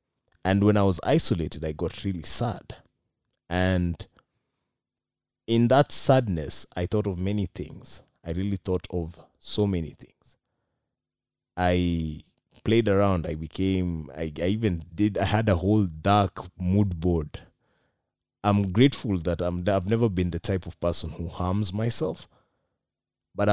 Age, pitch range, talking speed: 30-49, 85-105 Hz, 145 wpm